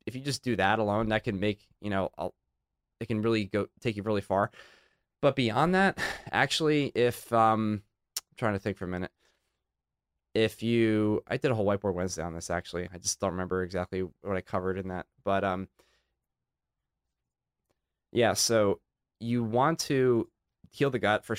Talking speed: 180 wpm